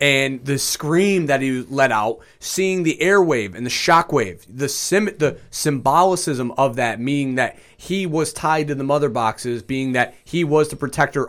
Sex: male